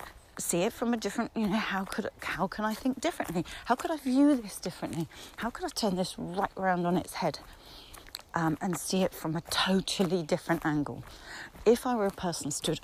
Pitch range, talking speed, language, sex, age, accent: 160-200 Hz, 210 wpm, English, female, 40-59, British